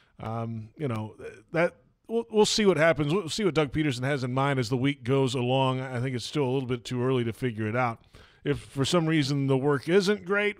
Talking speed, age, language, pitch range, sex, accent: 245 wpm, 30-49, English, 125-150 Hz, male, American